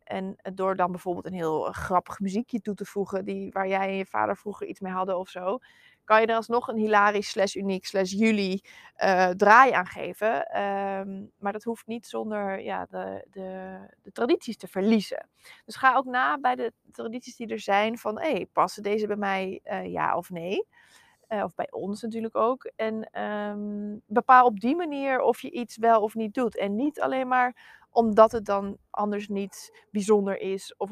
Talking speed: 185 wpm